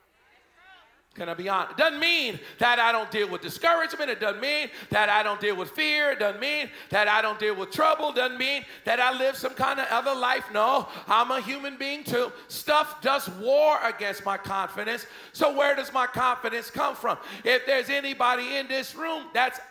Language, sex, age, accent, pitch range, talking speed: English, male, 40-59, American, 215-280 Hz, 205 wpm